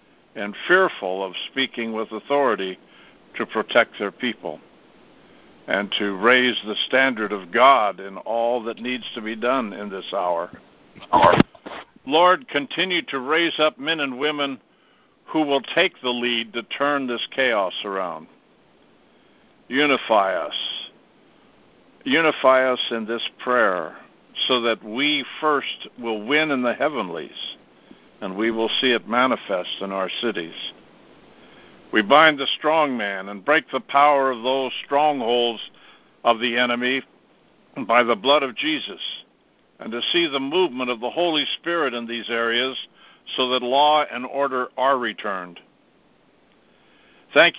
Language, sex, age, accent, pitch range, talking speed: English, male, 60-79, American, 115-145 Hz, 140 wpm